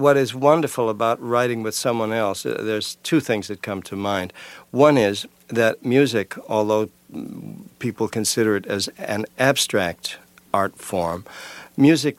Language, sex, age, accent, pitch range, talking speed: English, male, 60-79, American, 100-125 Hz, 145 wpm